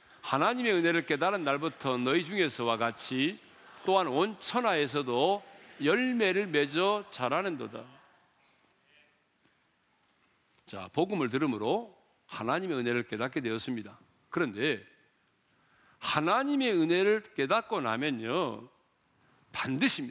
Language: Korean